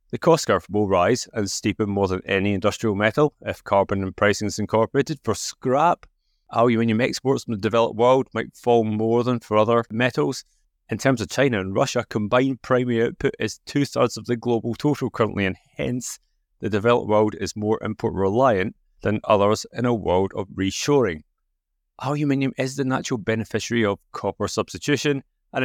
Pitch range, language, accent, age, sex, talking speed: 105-130 Hz, English, British, 30-49, male, 170 wpm